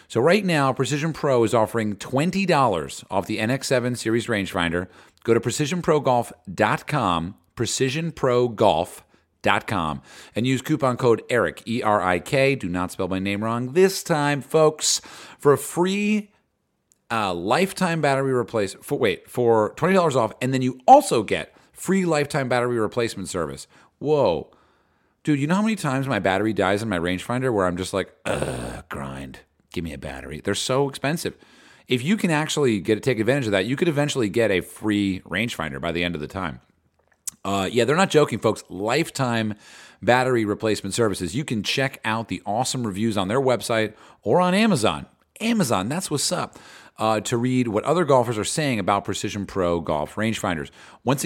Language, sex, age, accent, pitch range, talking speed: English, male, 40-59, American, 100-145 Hz, 170 wpm